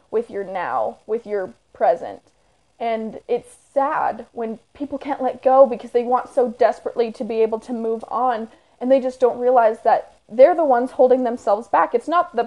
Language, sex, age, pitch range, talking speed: English, female, 10-29, 205-255 Hz, 190 wpm